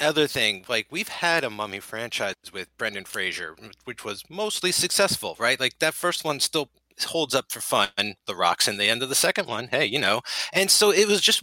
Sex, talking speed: male, 220 wpm